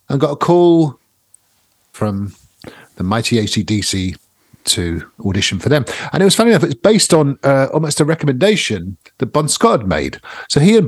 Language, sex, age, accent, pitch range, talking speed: English, male, 50-69, British, 105-150 Hz, 175 wpm